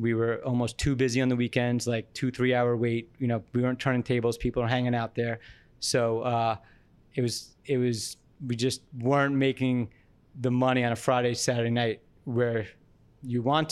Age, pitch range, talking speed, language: 20-39, 115-130 Hz, 195 wpm, English